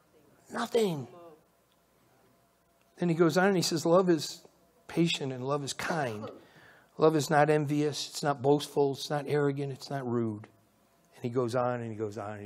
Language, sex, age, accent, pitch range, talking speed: English, male, 60-79, American, 120-175 Hz, 180 wpm